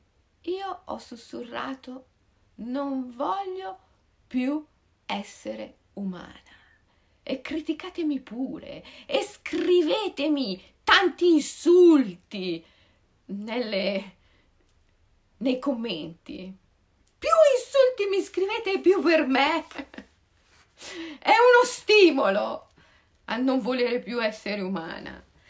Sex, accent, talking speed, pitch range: female, native, 80 wpm, 200-320 Hz